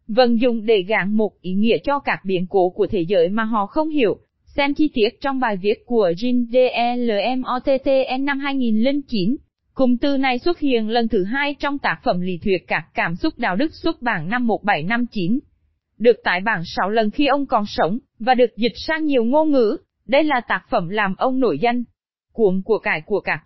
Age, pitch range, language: 20-39, 205-265 Hz, Vietnamese